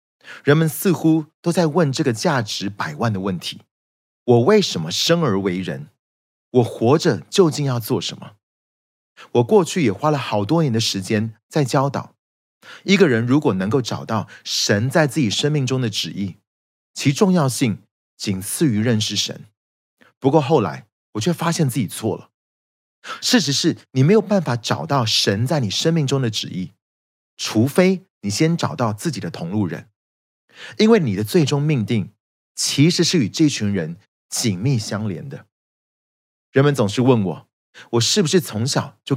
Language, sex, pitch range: Chinese, male, 105-160 Hz